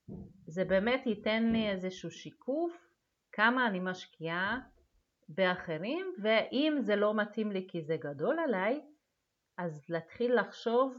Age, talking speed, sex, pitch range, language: 30-49, 120 wpm, female, 170-230 Hz, Hebrew